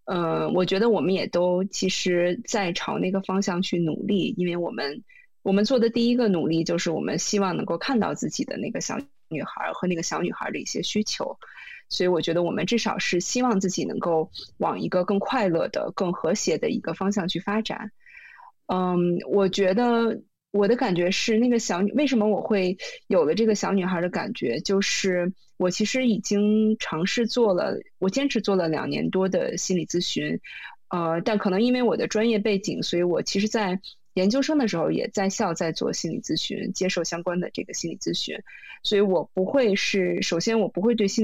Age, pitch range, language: 20-39, 180-225 Hz, Chinese